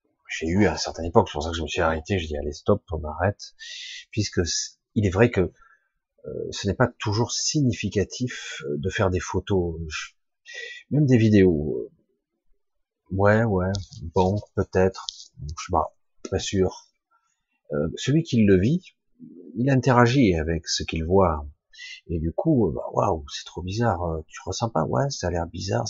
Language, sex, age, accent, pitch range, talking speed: French, male, 40-59, French, 85-120 Hz, 175 wpm